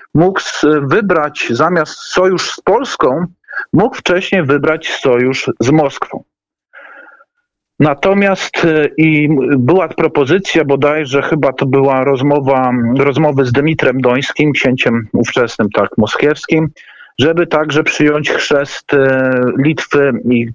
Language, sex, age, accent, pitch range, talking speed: Polish, male, 40-59, native, 130-155 Hz, 100 wpm